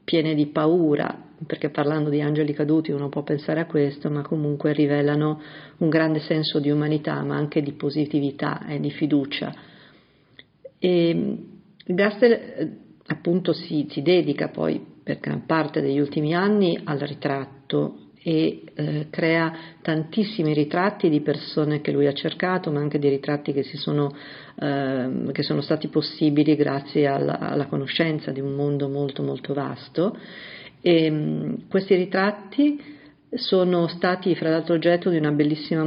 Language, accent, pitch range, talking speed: Italian, native, 145-170 Hz, 145 wpm